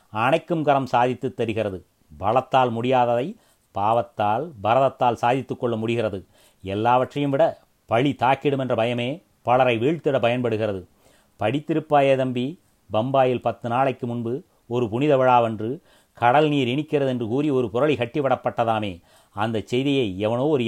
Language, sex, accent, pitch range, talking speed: Tamil, male, native, 115-140 Hz, 115 wpm